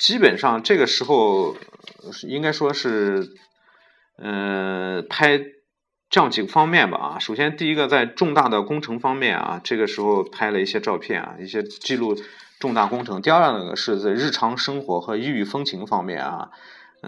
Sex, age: male, 30-49